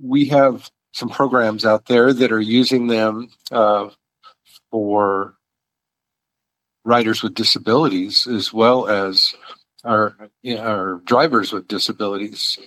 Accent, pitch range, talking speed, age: American, 100-115 Hz, 110 wpm, 50-69